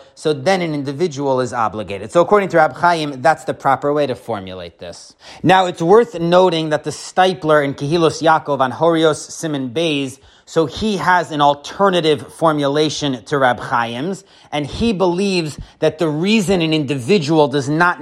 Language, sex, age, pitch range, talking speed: English, male, 30-49, 150-185 Hz, 170 wpm